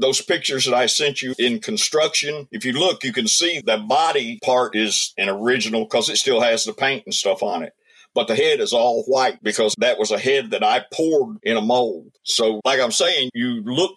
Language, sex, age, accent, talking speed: English, male, 50-69, American, 230 wpm